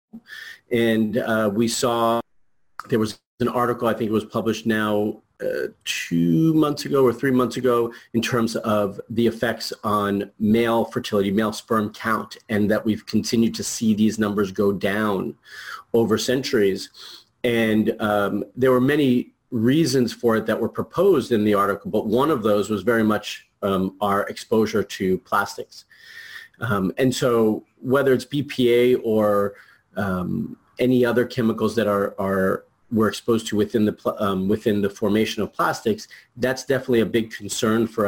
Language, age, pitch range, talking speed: English, 30-49, 100-120 Hz, 160 wpm